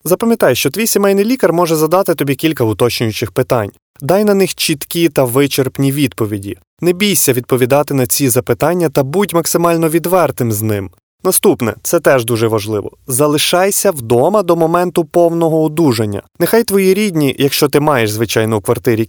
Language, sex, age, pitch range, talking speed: Ukrainian, male, 20-39, 125-175 Hz, 155 wpm